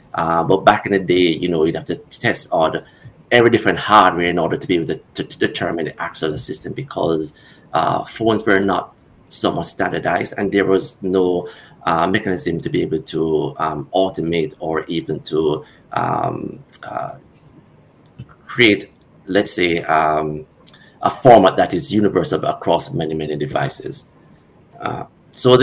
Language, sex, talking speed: English, male, 160 wpm